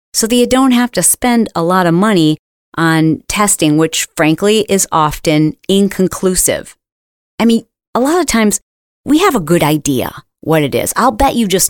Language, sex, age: English, female, 40-59